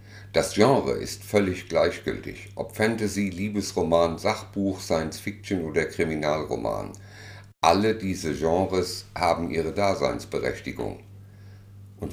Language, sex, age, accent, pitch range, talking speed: German, male, 60-79, German, 90-105 Hz, 95 wpm